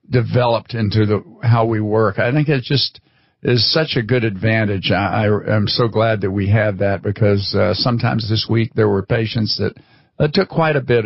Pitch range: 105-125 Hz